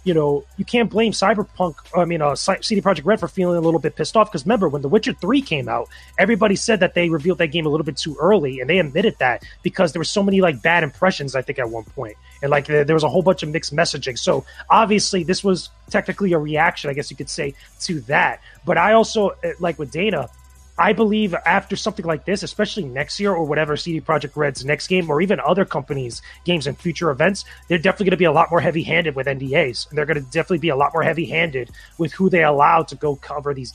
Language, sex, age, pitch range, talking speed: English, male, 30-49, 150-190 Hz, 250 wpm